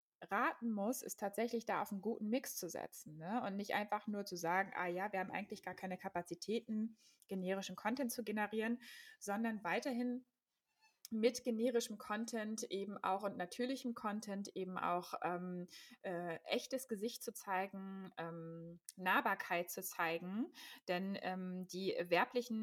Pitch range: 175-220 Hz